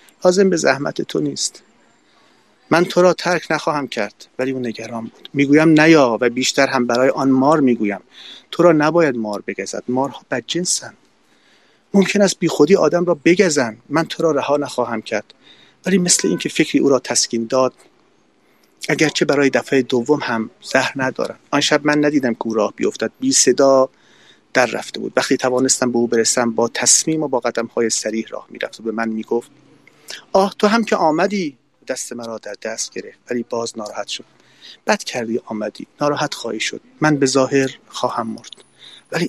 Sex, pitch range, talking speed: male, 120-160 Hz, 175 wpm